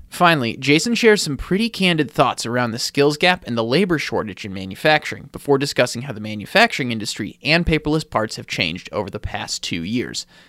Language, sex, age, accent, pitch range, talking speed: English, male, 30-49, American, 115-145 Hz, 190 wpm